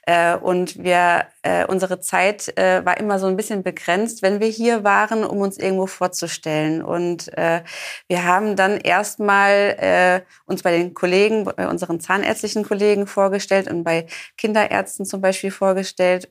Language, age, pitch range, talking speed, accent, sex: German, 30-49, 185-210 Hz, 160 wpm, German, female